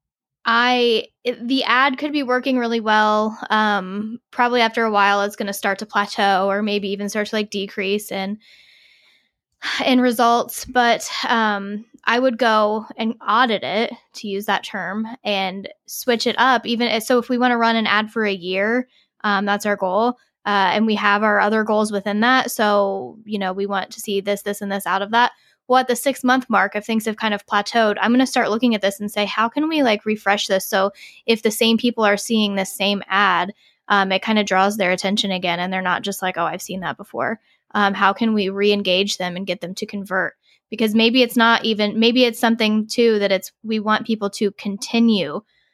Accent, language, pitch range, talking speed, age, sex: American, English, 200-230 Hz, 220 wpm, 10-29, female